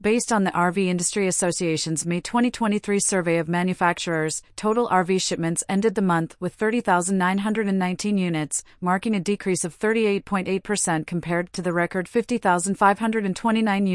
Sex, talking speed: female, 130 wpm